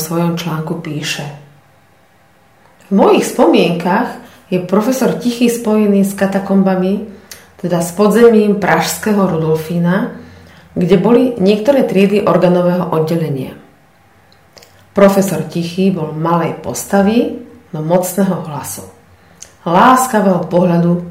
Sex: female